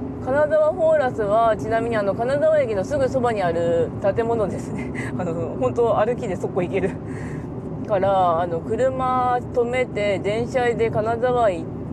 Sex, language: female, Japanese